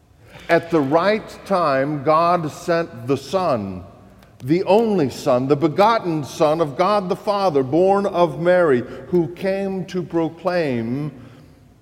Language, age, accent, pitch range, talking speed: English, 50-69, American, 115-175 Hz, 125 wpm